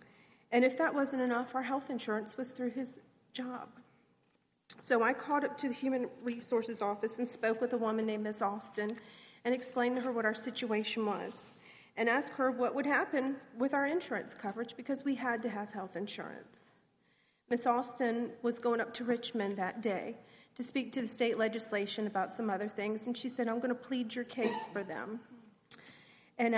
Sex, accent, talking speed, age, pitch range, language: female, American, 190 wpm, 40-59, 215-250 Hz, English